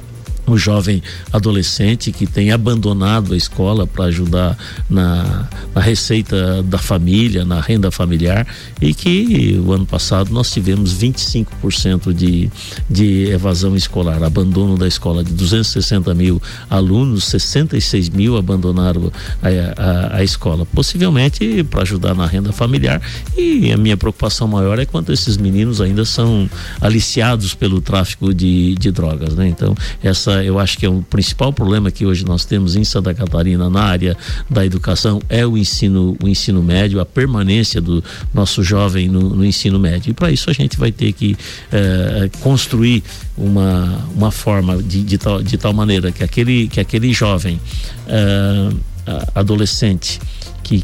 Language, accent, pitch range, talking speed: Portuguese, Brazilian, 90-110 Hz, 155 wpm